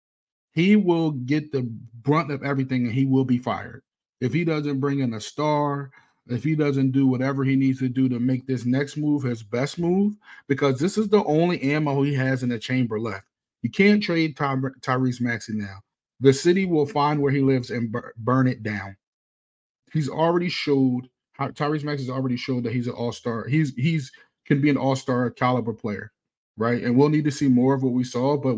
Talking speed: 210 wpm